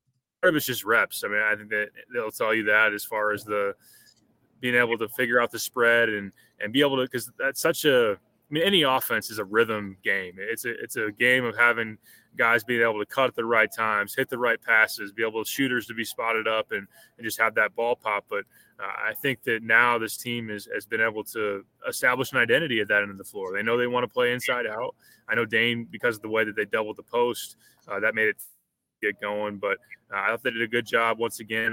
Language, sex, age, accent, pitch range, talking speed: English, male, 20-39, American, 105-120 Hz, 255 wpm